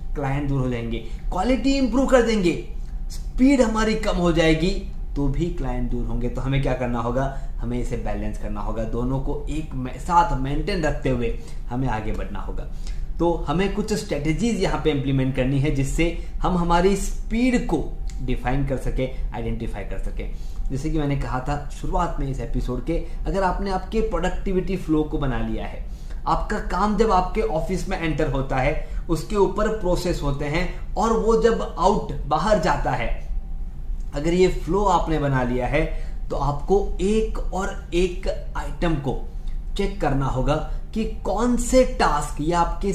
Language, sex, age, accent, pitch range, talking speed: Hindi, male, 20-39, native, 130-195 Hz, 125 wpm